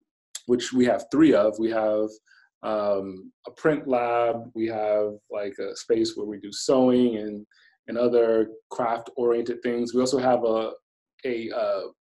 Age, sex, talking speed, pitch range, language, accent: 30-49, male, 160 wpm, 110-135 Hz, English, American